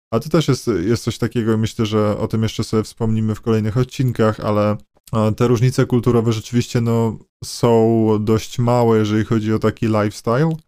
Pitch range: 110-125 Hz